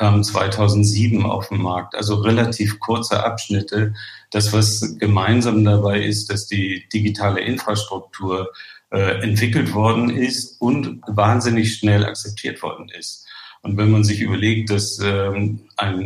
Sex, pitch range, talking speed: male, 100-110 Hz, 125 wpm